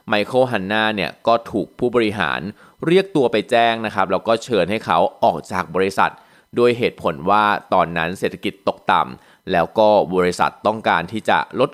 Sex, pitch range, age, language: male, 100-125 Hz, 20-39, Thai